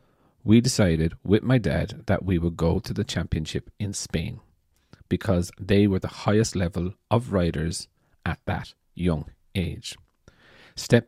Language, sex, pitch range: English, male, 85-105 Hz